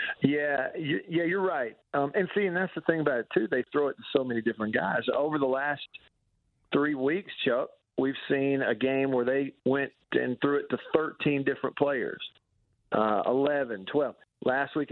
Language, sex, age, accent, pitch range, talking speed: English, male, 50-69, American, 125-155 Hz, 190 wpm